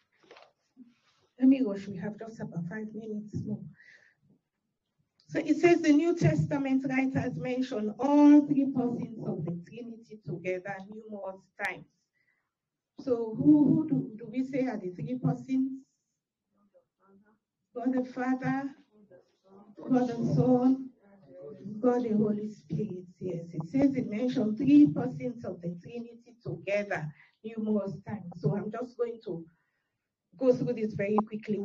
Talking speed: 130 wpm